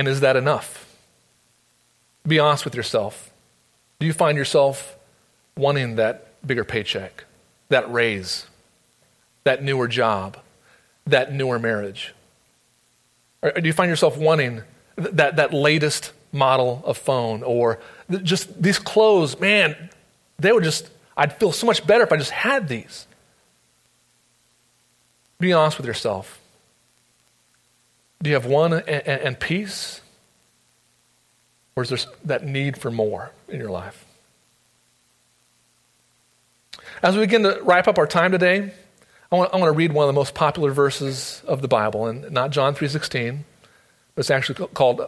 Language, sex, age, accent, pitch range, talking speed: English, male, 30-49, American, 120-165 Hz, 140 wpm